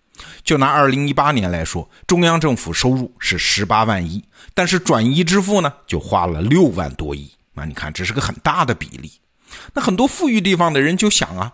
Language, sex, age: Chinese, male, 50-69